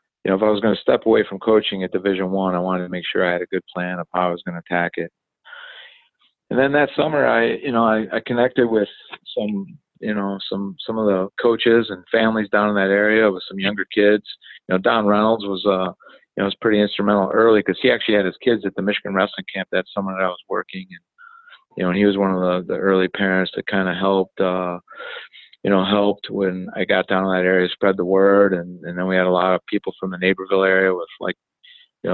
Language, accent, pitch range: English, American, 95-110 Hz